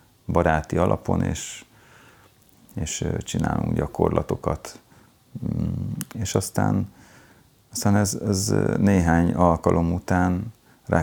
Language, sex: Hungarian, male